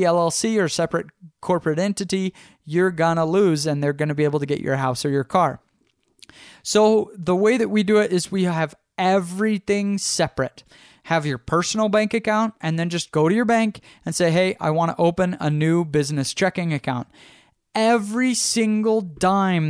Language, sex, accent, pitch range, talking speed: English, male, American, 150-195 Hz, 185 wpm